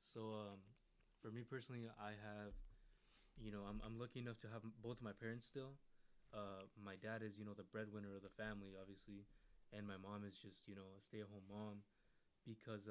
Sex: male